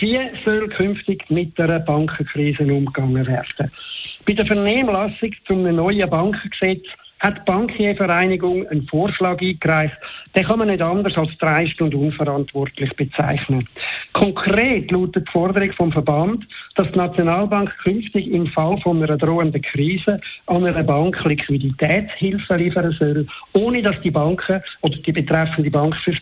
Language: German